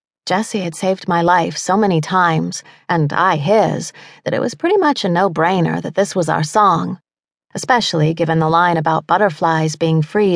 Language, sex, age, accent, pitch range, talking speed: English, female, 30-49, American, 160-200 Hz, 180 wpm